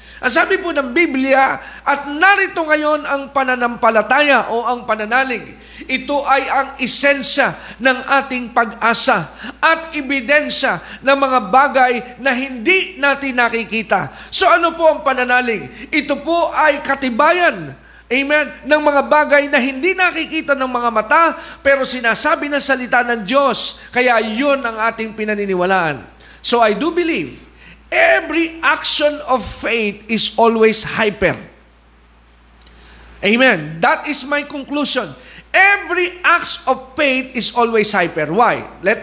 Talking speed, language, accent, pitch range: 130 wpm, Filipino, native, 230-295 Hz